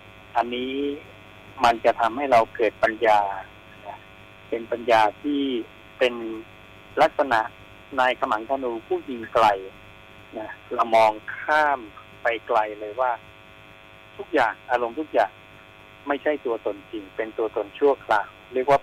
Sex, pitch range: male, 105-145 Hz